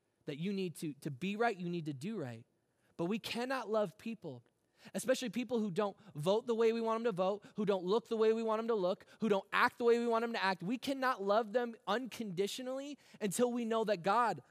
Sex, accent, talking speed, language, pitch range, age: male, American, 245 wpm, English, 195-260 Hz, 20-39